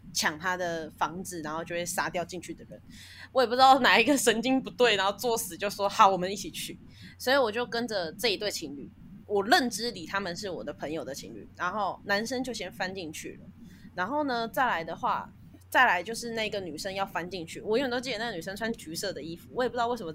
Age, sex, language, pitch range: 20-39, female, Chinese, 185-240 Hz